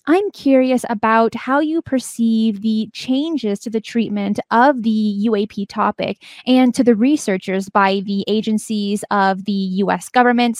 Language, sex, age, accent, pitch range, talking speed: English, female, 20-39, American, 215-270 Hz, 145 wpm